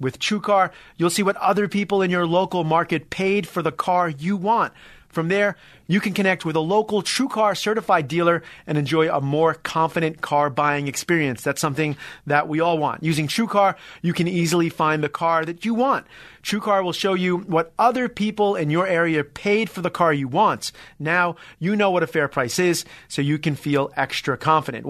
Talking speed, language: 200 wpm, English